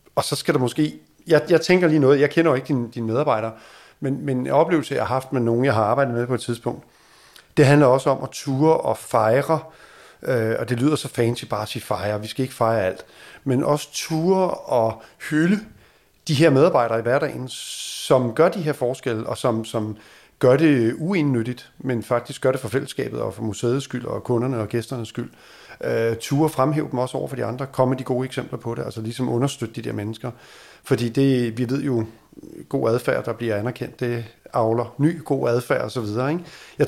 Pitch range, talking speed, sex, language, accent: 115-140 Hz, 210 wpm, male, Danish, native